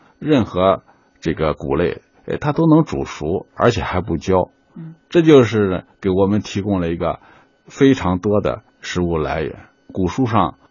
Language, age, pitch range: Chinese, 50-69, 85-115 Hz